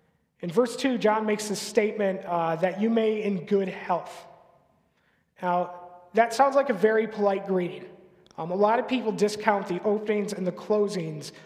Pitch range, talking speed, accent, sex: 180-220 Hz, 175 wpm, American, male